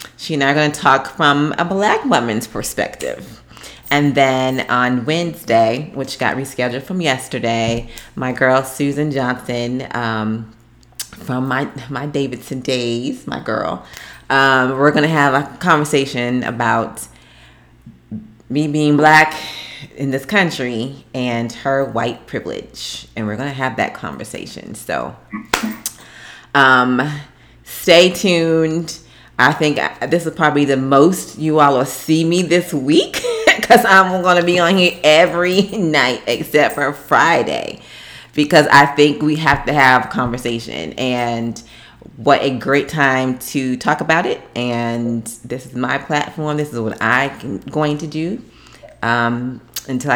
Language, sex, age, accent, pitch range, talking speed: English, female, 30-49, American, 125-155 Hz, 145 wpm